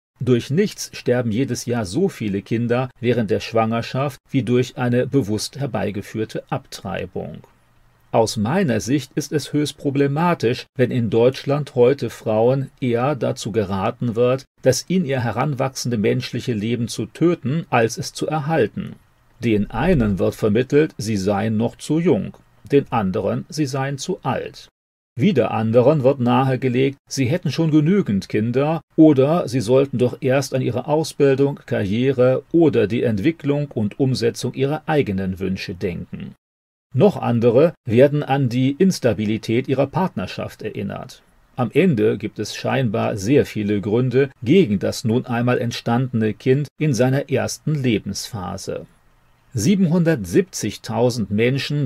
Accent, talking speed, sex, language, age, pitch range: German, 135 wpm, male, German, 40-59, 115-140 Hz